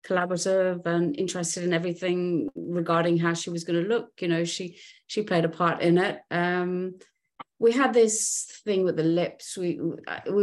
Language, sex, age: English, female, 30-49